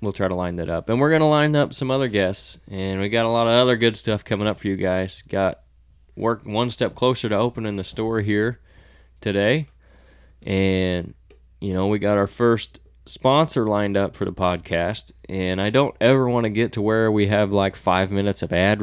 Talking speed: 215 wpm